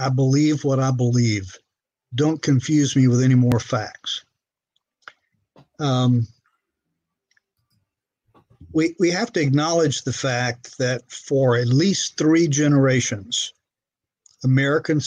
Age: 50-69